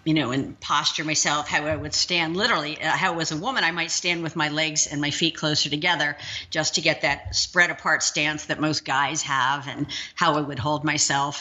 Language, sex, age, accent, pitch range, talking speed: English, female, 50-69, American, 150-185 Hz, 225 wpm